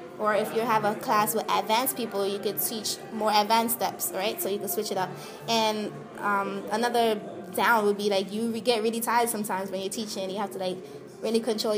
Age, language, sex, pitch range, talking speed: 20-39, English, female, 195-230 Hz, 225 wpm